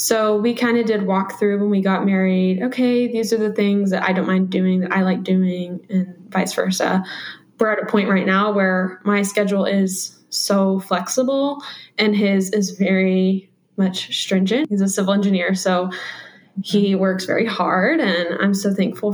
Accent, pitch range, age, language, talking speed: American, 190-225 Hz, 10-29, English, 185 wpm